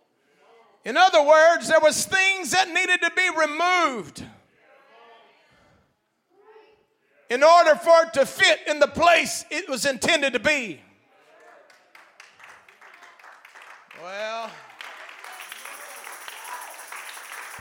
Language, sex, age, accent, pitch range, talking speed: English, male, 40-59, American, 245-335 Hz, 90 wpm